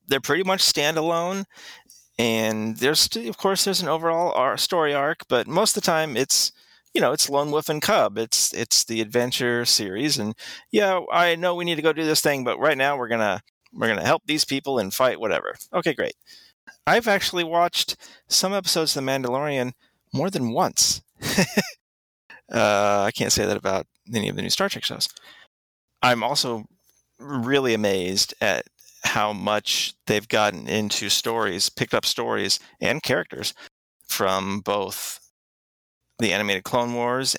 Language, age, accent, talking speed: English, 30-49, American, 165 wpm